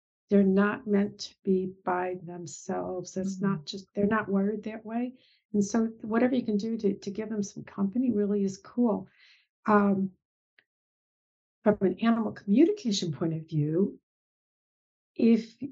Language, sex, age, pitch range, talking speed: English, female, 50-69, 195-230 Hz, 150 wpm